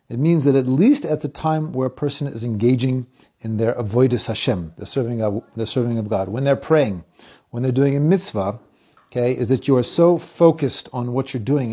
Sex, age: male, 40-59